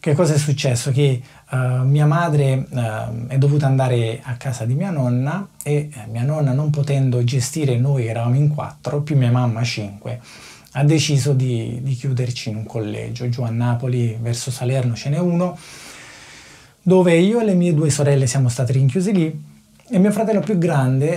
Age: 20-39